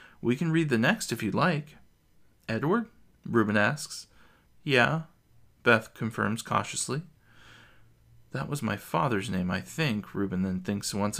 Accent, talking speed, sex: American, 140 wpm, male